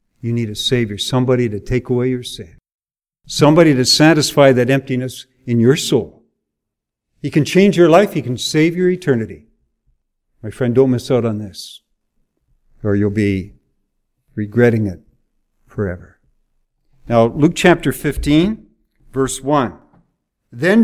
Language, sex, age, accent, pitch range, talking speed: English, male, 60-79, American, 115-165 Hz, 140 wpm